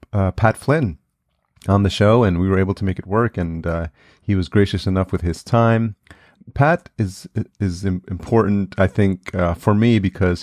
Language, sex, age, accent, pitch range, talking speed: English, male, 30-49, American, 90-105 Hz, 190 wpm